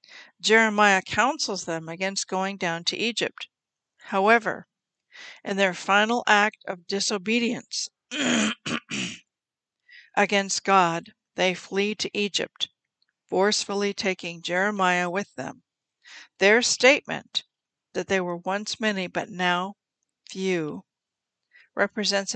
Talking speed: 100 wpm